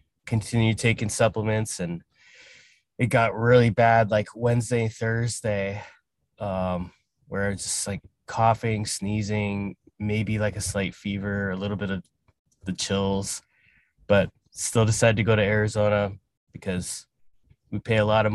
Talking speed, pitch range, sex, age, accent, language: 135 wpm, 100-120 Hz, male, 20-39, American, English